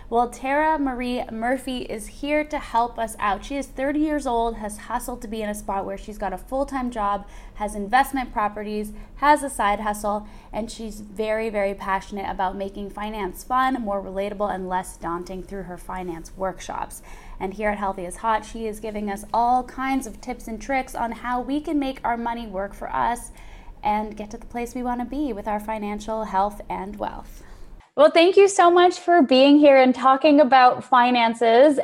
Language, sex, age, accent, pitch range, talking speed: English, female, 10-29, American, 210-265 Hz, 200 wpm